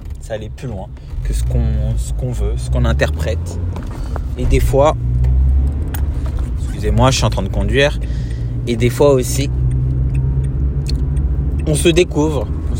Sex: male